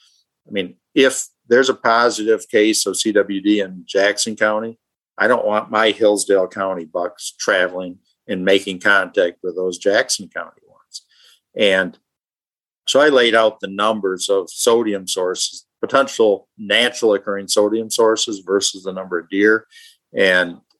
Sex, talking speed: male, 140 wpm